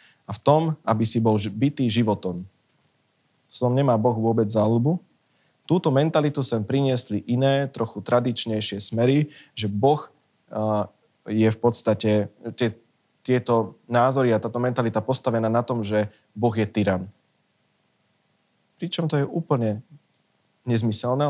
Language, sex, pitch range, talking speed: Slovak, male, 110-145 Hz, 125 wpm